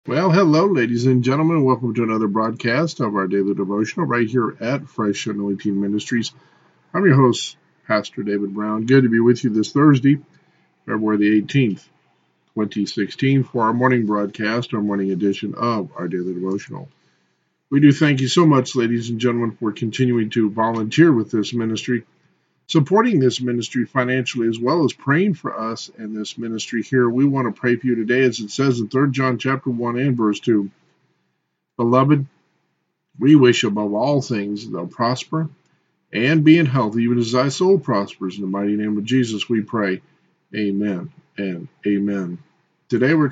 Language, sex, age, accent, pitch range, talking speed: English, male, 50-69, American, 105-135 Hz, 175 wpm